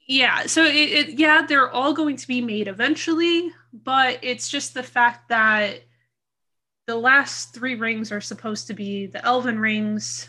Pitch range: 200-245 Hz